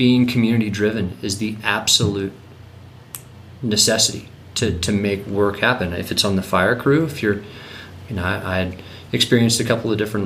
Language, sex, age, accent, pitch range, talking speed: English, male, 30-49, American, 95-115 Hz, 175 wpm